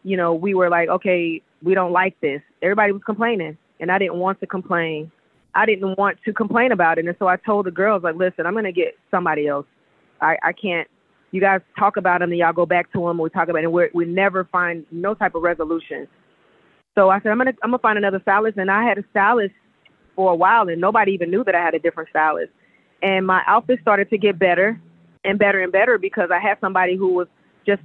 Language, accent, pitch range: English, American, 175-210 Hz